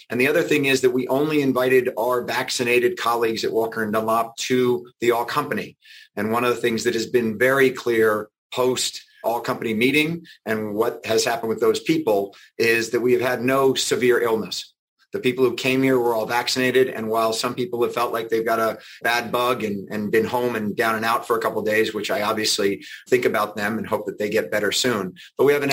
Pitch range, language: 110-130 Hz, English